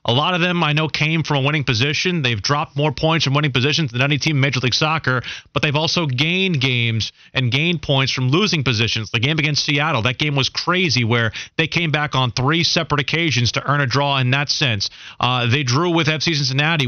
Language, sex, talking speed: English, male, 230 wpm